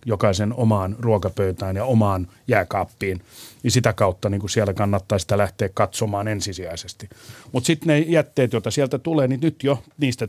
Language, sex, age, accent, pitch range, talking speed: Finnish, male, 30-49, native, 105-135 Hz, 155 wpm